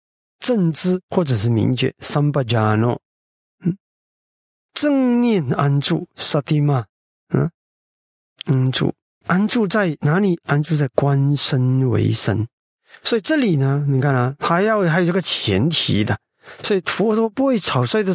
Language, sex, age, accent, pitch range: Chinese, male, 50-69, native, 130-190 Hz